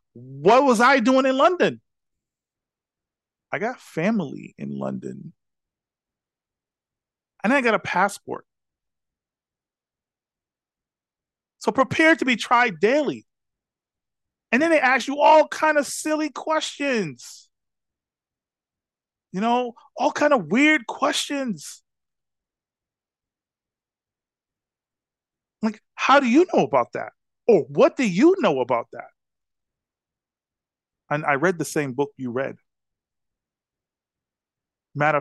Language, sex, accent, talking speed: English, male, American, 105 wpm